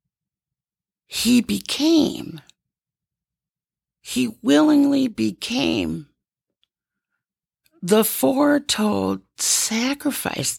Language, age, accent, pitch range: English, 40-59, American, 205-285 Hz